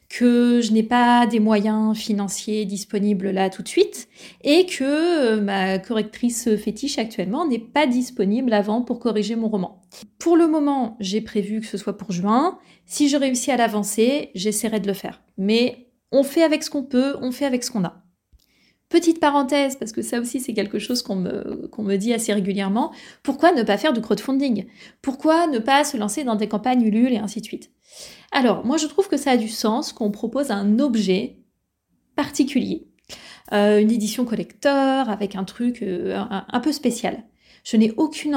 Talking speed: 190 wpm